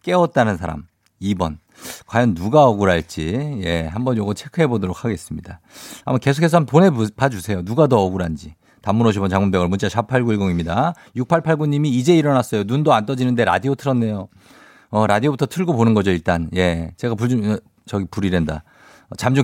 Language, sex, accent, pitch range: Korean, male, native, 95-150 Hz